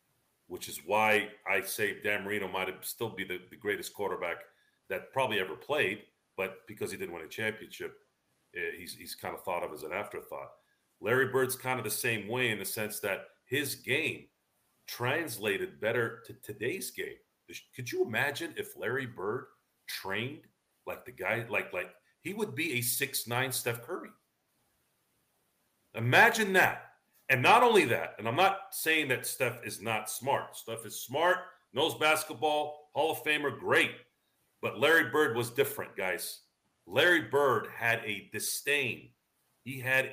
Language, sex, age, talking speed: English, male, 40-59, 165 wpm